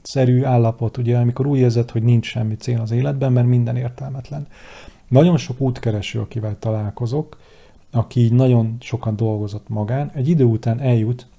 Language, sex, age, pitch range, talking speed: Hungarian, male, 40-59, 110-130 Hz, 155 wpm